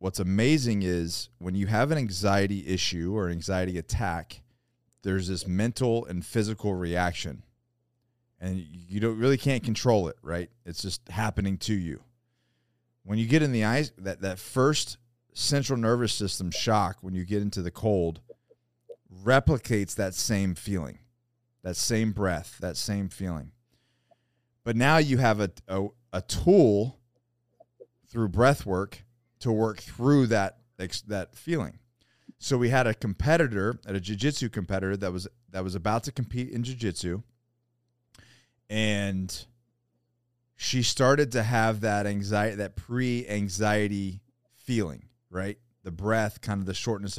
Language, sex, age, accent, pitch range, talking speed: English, male, 30-49, American, 95-120 Hz, 145 wpm